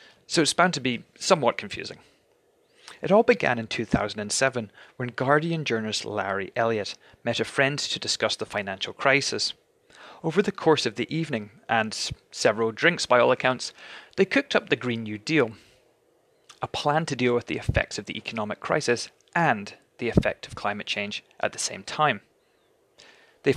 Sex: male